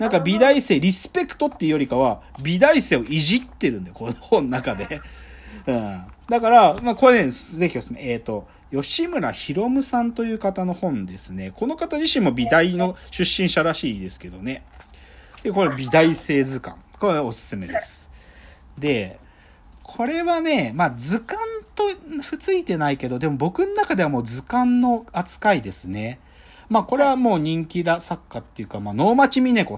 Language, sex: Japanese, male